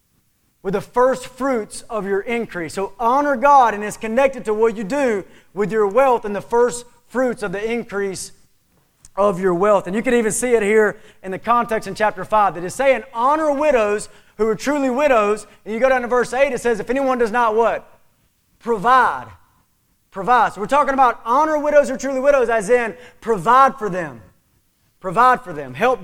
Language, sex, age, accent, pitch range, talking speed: English, male, 30-49, American, 195-260 Hz, 200 wpm